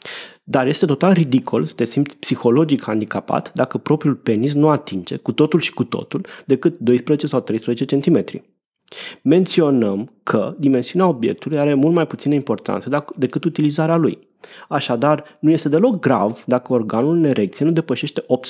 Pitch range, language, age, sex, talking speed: 125-175 Hz, Romanian, 20-39, male, 155 wpm